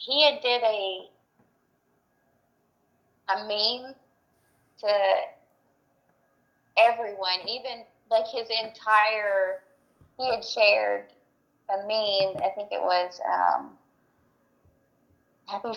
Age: 20-39